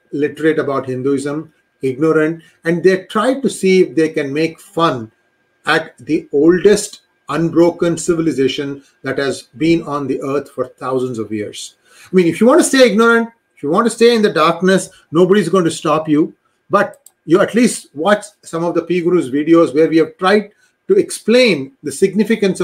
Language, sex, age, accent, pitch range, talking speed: English, male, 30-49, Indian, 145-180 Hz, 185 wpm